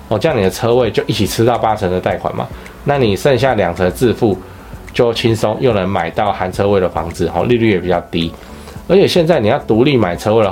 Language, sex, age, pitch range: Chinese, male, 20-39, 95-120 Hz